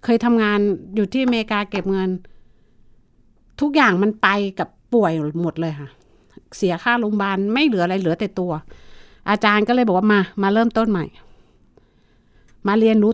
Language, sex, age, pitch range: Thai, female, 60-79, 195-245 Hz